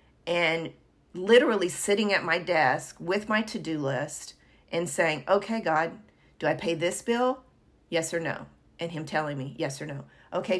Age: 40-59